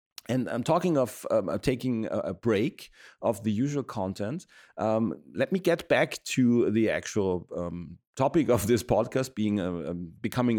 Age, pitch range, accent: 40-59, 95-120 Hz, German